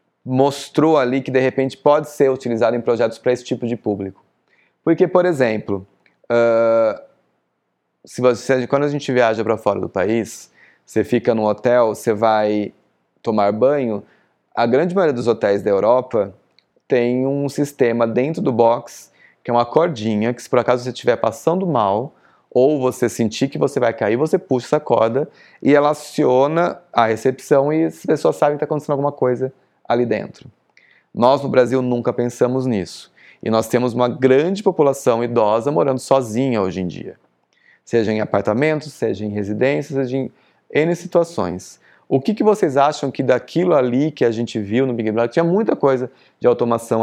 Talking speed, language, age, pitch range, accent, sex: 175 wpm, Portuguese, 20-39, 115-145 Hz, Brazilian, male